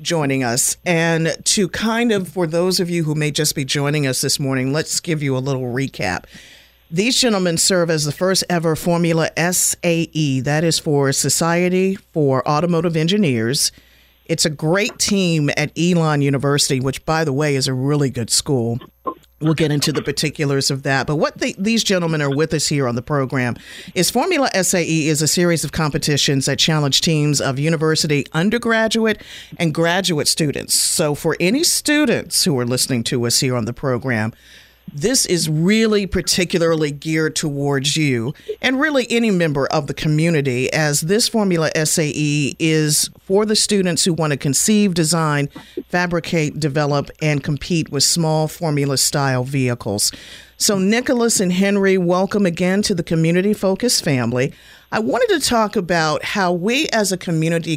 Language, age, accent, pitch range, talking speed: English, 50-69, American, 145-185 Hz, 165 wpm